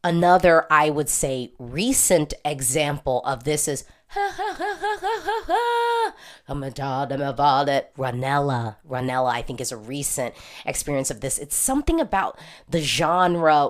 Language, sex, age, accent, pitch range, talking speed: English, female, 30-49, American, 130-180 Hz, 115 wpm